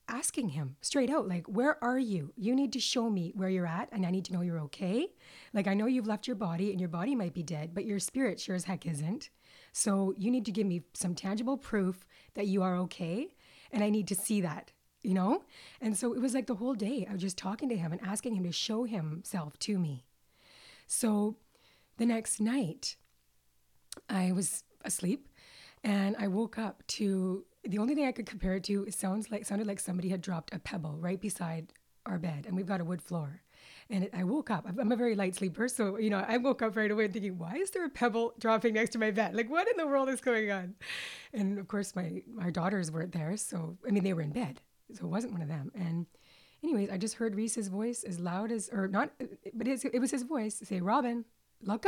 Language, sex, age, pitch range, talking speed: English, female, 30-49, 185-230 Hz, 230 wpm